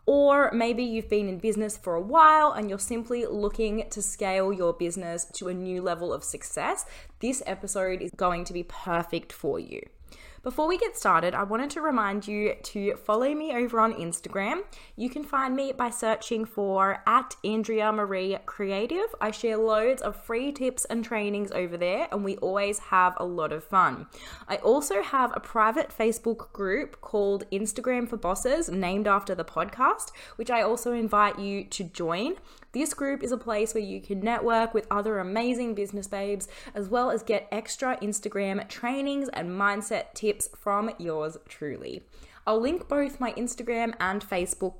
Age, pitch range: 20-39, 190-240 Hz